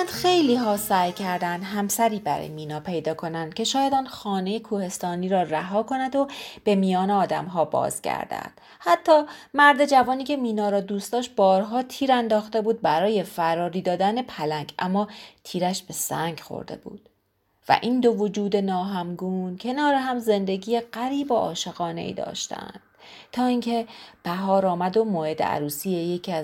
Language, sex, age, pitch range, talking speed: Persian, female, 30-49, 175-230 Hz, 150 wpm